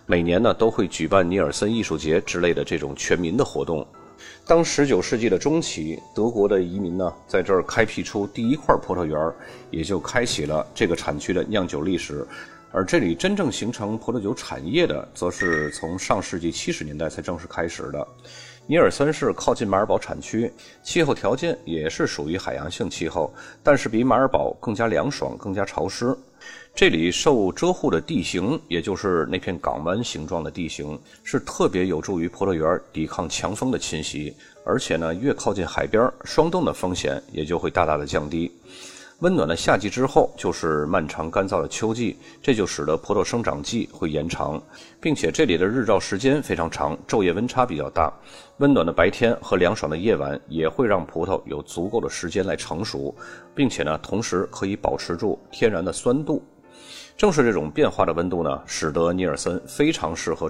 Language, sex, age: Chinese, male, 30-49